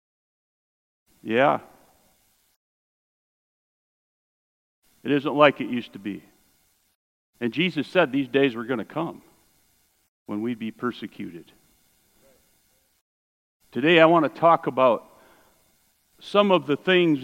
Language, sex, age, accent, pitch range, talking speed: English, male, 50-69, American, 130-195 Hz, 110 wpm